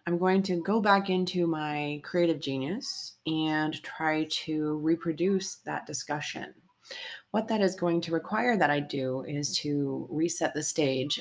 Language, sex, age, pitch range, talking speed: English, female, 30-49, 155-185 Hz, 155 wpm